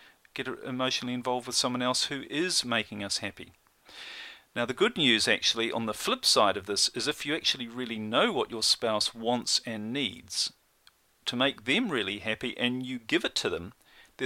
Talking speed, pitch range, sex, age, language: 195 wpm, 115-145 Hz, male, 40-59, English